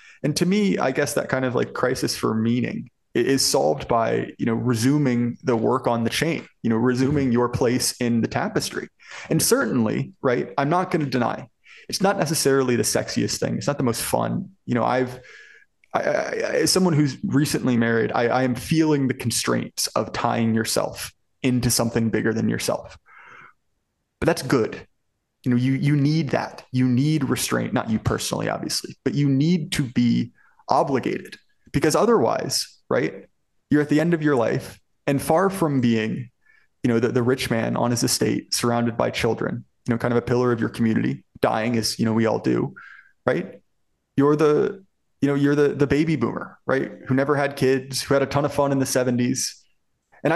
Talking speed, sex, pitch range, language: 190 wpm, male, 120-150 Hz, English